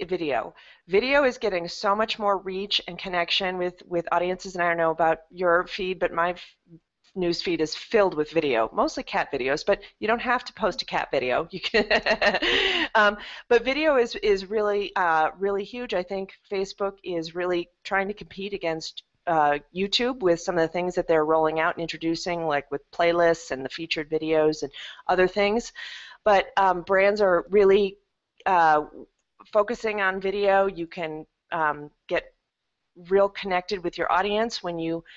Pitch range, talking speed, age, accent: 165-200 Hz, 175 wpm, 30-49, American